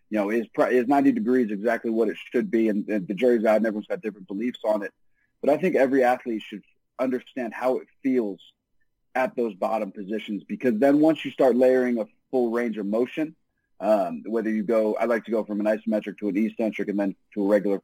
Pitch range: 105-130 Hz